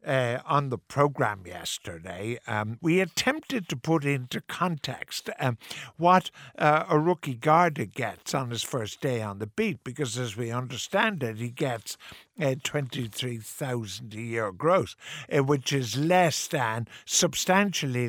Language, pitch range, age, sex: English, 120-150 Hz, 60-79, male